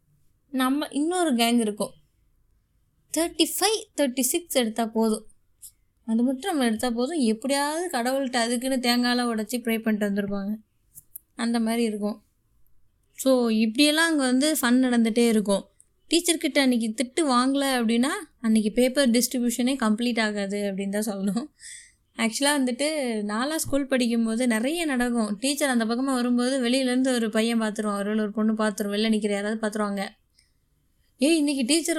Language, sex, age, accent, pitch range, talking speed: Tamil, female, 20-39, native, 220-280 Hz, 135 wpm